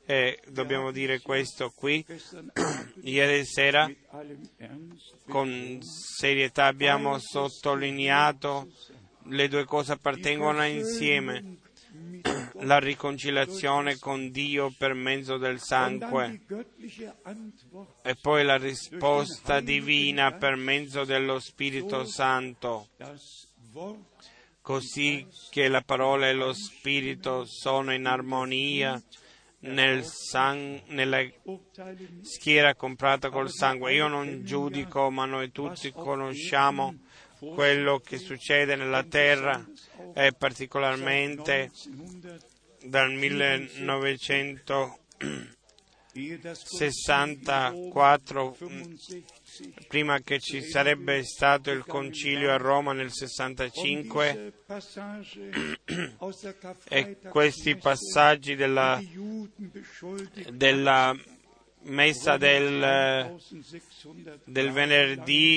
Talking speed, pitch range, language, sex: 80 wpm, 135-150 Hz, Italian, male